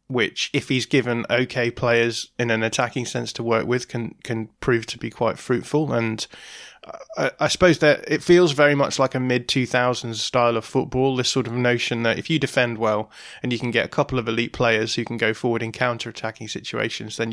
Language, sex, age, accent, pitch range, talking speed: English, male, 20-39, British, 115-125 Hz, 210 wpm